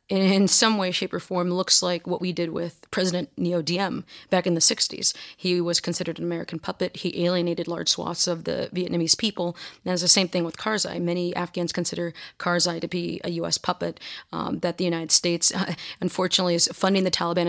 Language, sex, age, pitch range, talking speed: English, female, 30-49, 170-185 Hz, 205 wpm